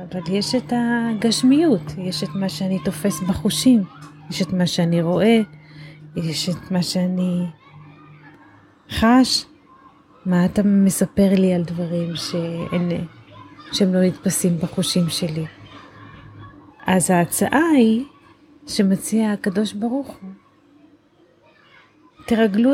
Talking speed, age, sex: 105 wpm, 30-49, female